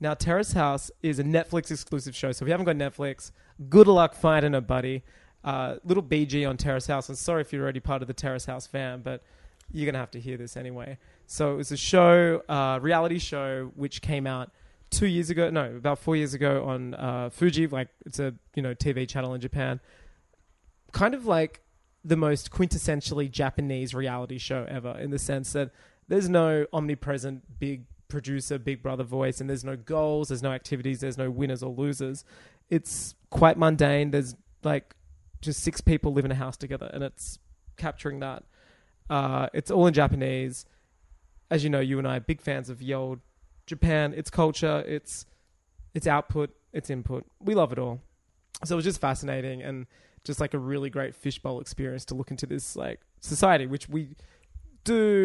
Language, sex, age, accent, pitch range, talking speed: English, male, 20-39, Australian, 130-150 Hz, 195 wpm